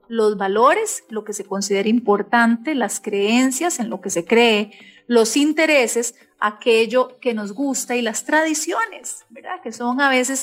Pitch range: 215-260 Hz